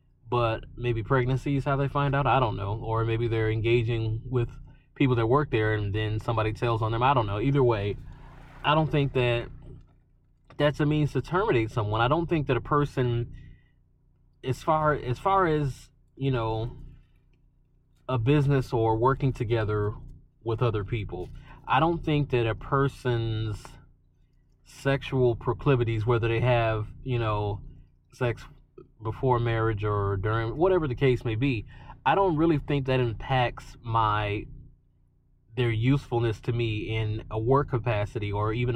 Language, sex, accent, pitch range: English, male, American, 115-135 Hz